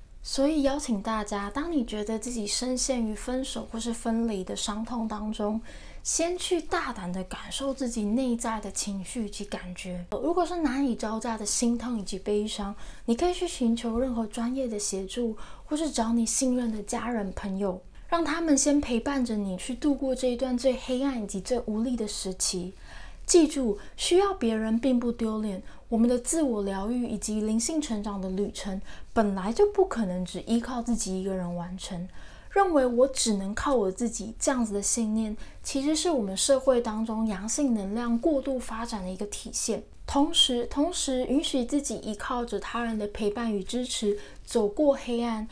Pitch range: 210-260 Hz